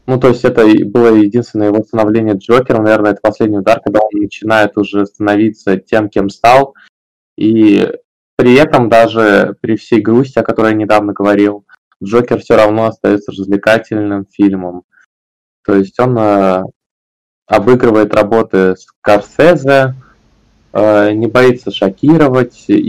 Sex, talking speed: male, 125 wpm